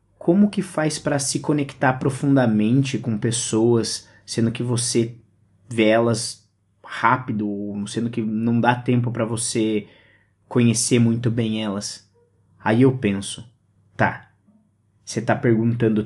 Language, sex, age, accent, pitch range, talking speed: Portuguese, male, 20-39, Brazilian, 105-130 Hz, 125 wpm